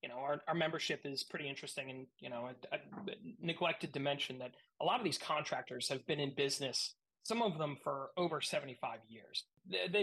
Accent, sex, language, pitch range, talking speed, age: American, male, English, 140-180 Hz, 195 wpm, 30-49